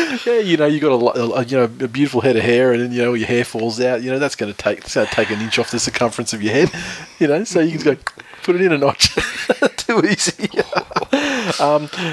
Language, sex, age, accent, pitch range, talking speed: English, male, 20-39, Australian, 115-135 Hz, 270 wpm